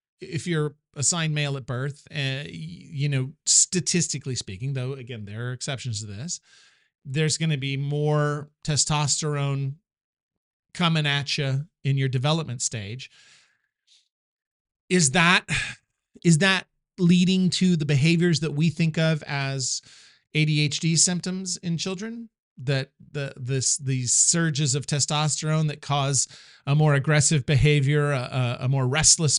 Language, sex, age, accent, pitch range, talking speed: English, male, 40-59, American, 140-175 Hz, 135 wpm